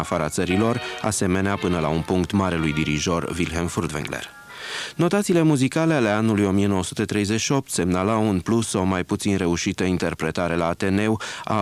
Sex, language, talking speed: male, Romanian, 145 wpm